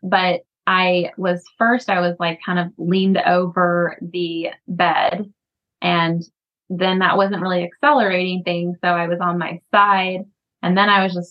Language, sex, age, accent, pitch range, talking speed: English, female, 20-39, American, 175-215 Hz, 165 wpm